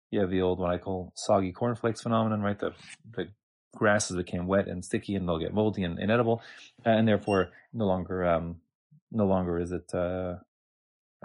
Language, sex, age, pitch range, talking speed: English, male, 30-49, 95-120 Hz, 185 wpm